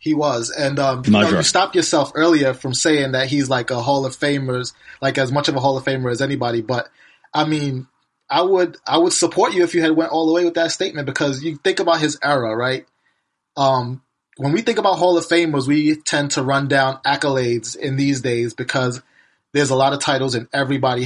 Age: 20-39